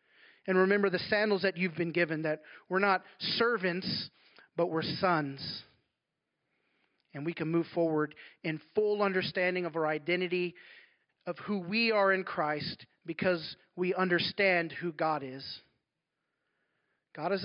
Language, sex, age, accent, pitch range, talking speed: English, male, 40-59, American, 160-190 Hz, 140 wpm